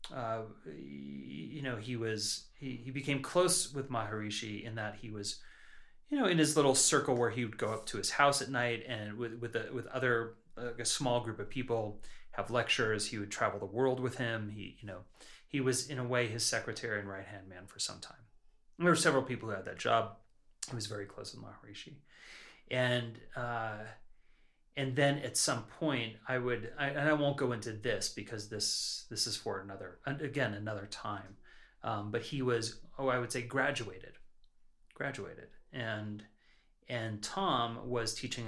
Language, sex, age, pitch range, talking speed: English, male, 30-49, 105-130 Hz, 190 wpm